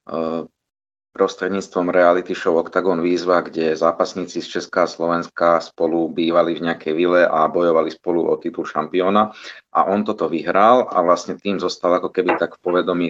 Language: Slovak